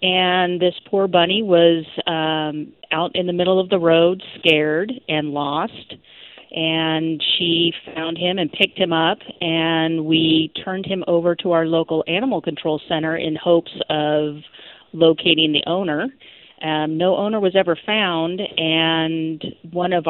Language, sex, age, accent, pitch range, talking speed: English, female, 40-59, American, 160-180 Hz, 150 wpm